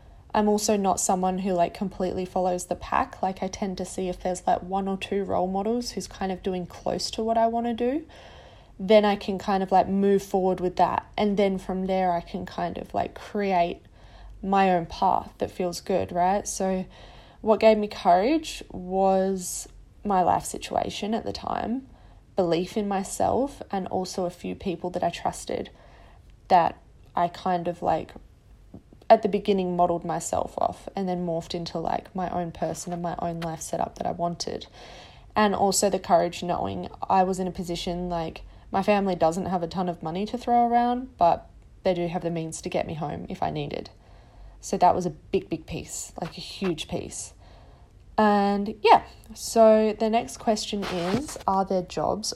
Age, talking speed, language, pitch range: 10-29, 190 wpm, English, 175-205 Hz